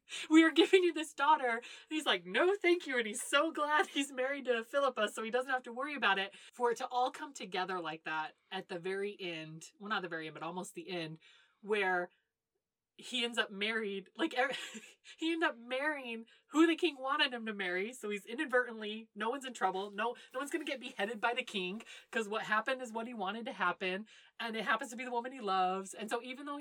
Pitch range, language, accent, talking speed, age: 190-250 Hz, English, American, 235 wpm, 30-49